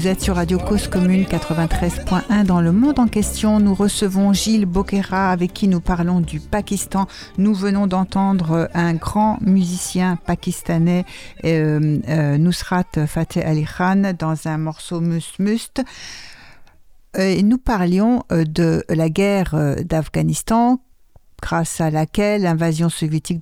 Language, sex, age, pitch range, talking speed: French, female, 60-79, 165-200 Hz, 130 wpm